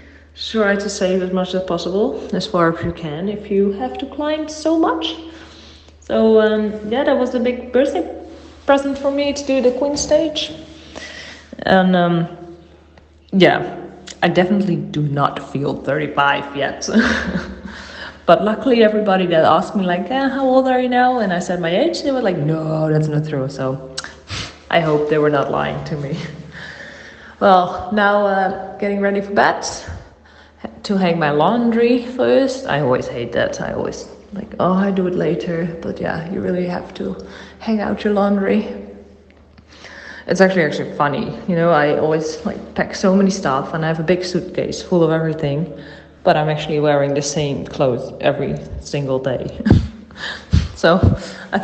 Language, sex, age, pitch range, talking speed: English, female, 20-39, 150-215 Hz, 170 wpm